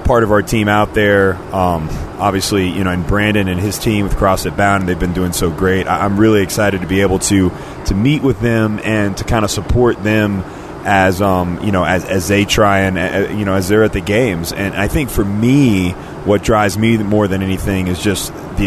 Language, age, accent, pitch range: English, 30-49, American, 95-110 Hz